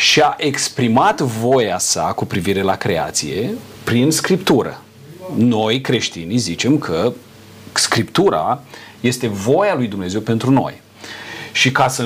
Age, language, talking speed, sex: 40-59, Romanian, 120 wpm, male